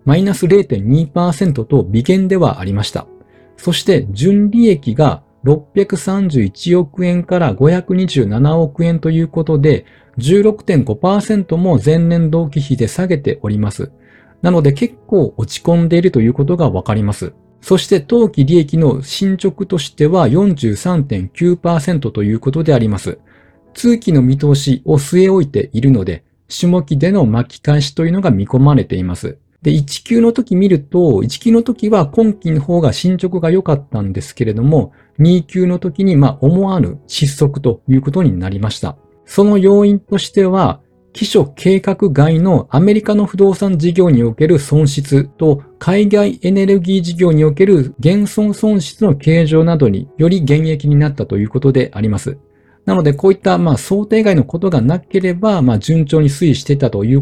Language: Japanese